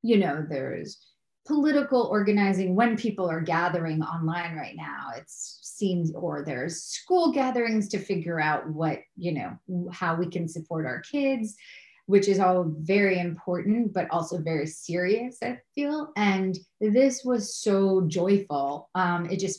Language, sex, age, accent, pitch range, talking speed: English, female, 30-49, American, 160-195 Hz, 150 wpm